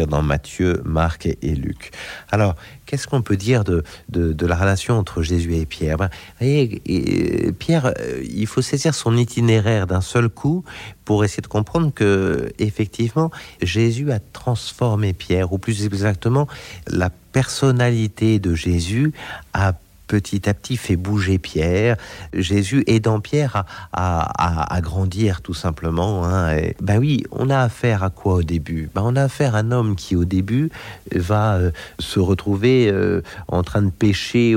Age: 50-69